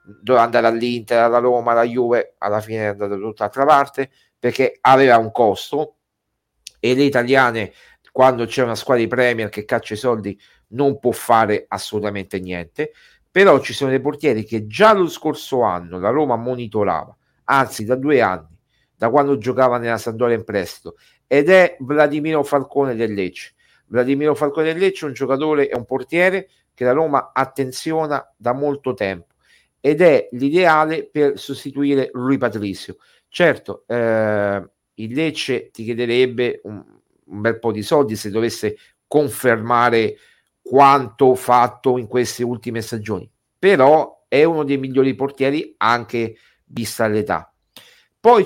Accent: native